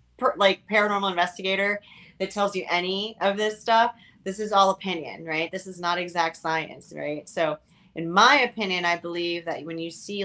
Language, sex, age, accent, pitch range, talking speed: English, female, 30-49, American, 160-180 Hz, 180 wpm